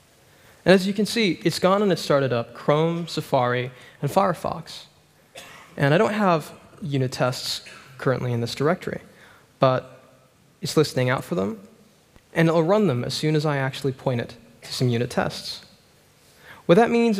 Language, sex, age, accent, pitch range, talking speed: English, male, 20-39, American, 135-175 Hz, 170 wpm